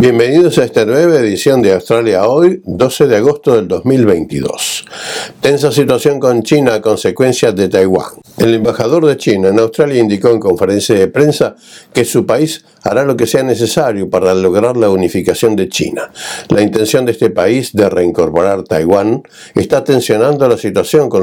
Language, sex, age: Spanish, male, 60-79